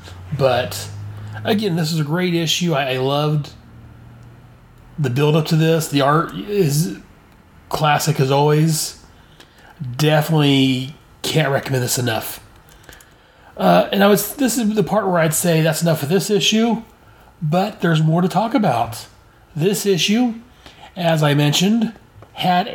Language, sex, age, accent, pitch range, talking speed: English, male, 30-49, American, 135-175 Hz, 135 wpm